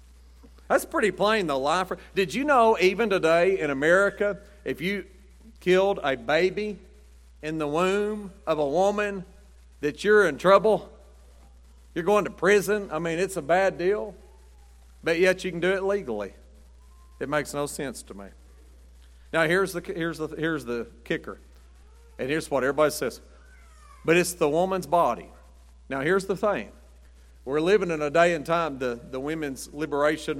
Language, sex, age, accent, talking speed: English, male, 50-69, American, 160 wpm